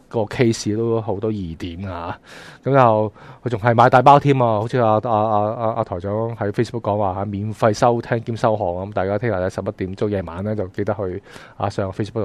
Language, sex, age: Chinese, male, 20-39